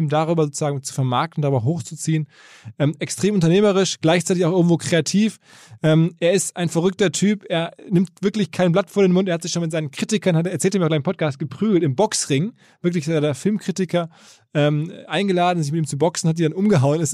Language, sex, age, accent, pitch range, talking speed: German, male, 20-39, German, 150-180 Hz, 205 wpm